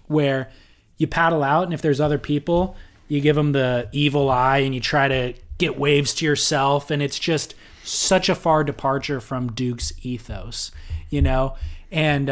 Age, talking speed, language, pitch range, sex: 20-39, 175 wpm, English, 120-155 Hz, male